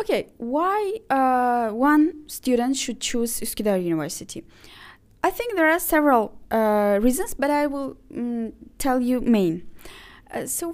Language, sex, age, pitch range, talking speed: Arabic, female, 20-39, 225-275 Hz, 140 wpm